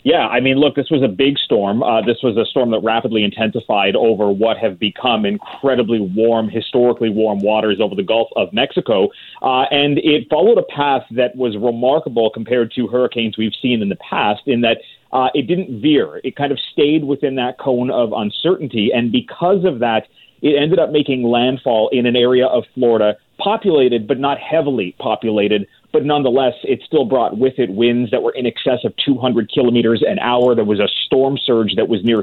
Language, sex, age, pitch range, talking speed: English, male, 30-49, 115-135 Hz, 200 wpm